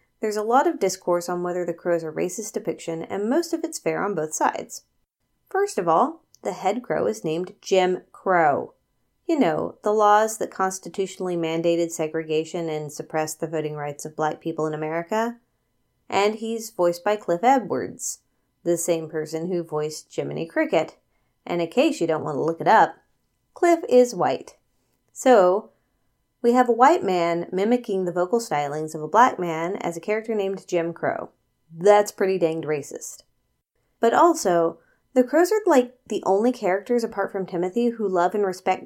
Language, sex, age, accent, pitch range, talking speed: English, female, 30-49, American, 165-230 Hz, 180 wpm